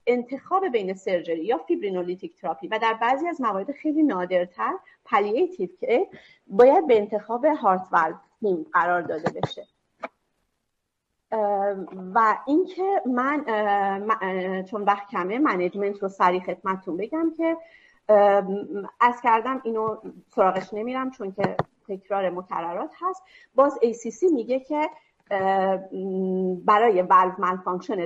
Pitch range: 190-280 Hz